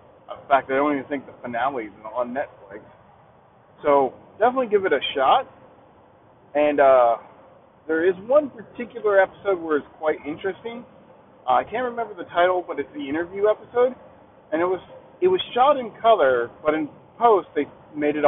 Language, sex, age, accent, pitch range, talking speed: English, male, 40-59, American, 140-220 Hz, 170 wpm